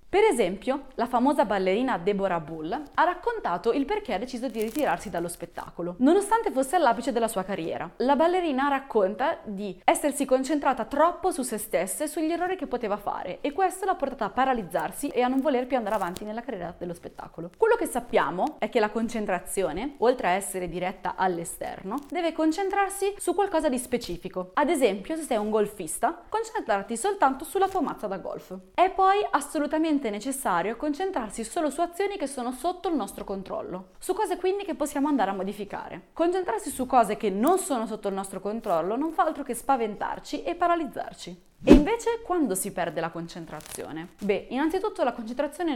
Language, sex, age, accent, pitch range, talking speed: Italian, female, 20-39, native, 205-325 Hz, 180 wpm